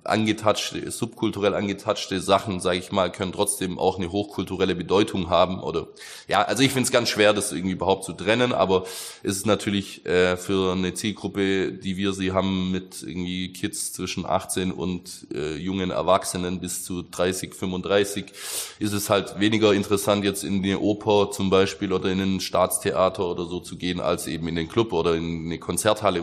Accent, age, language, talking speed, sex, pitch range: German, 20-39, German, 180 wpm, male, 90-100 Hz